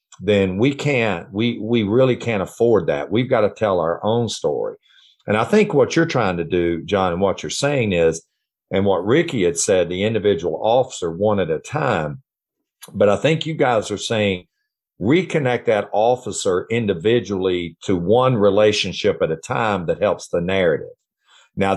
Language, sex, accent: English, male, American